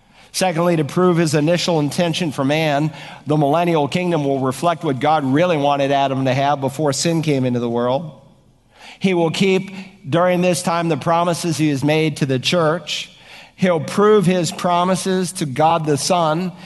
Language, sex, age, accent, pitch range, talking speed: English, male, 50-69, American, 150-180 Hz, 175 wpm